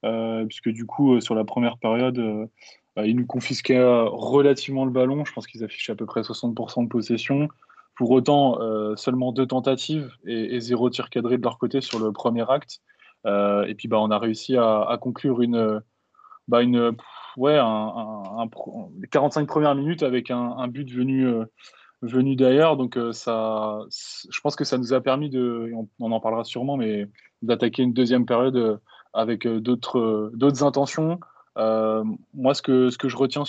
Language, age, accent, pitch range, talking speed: French, 20-39, French, 115-135 Hz, 195 wpm